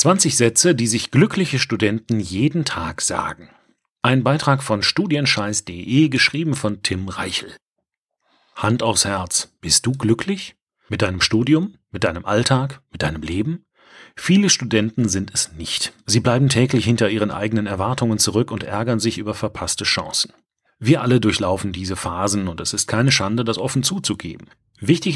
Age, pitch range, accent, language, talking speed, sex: 40-59, 105-135 Hz, German, German, 155 wpm, male